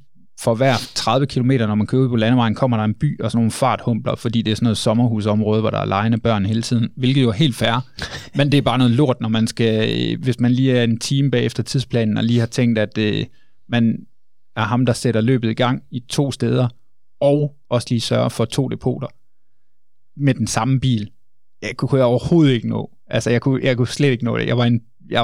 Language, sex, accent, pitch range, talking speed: Danish, male, native, 110-130 Hz, 240 wpm